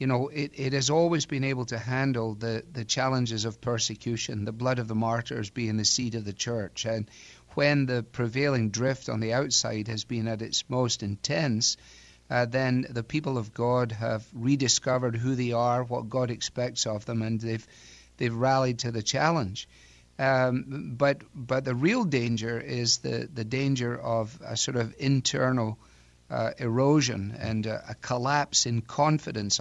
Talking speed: 175 wpm